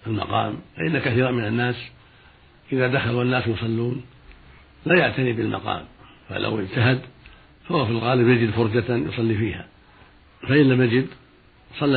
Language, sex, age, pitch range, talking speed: Arabic, male, 60-79, 105-125 Hz, 125 wpm